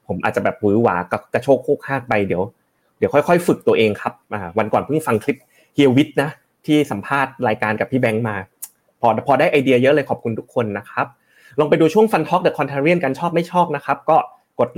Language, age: Thai, 30-49